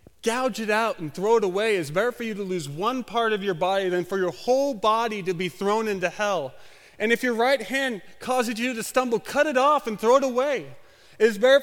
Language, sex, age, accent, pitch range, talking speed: English, male, 30-49, American, 150-215 Hz, 235 wpm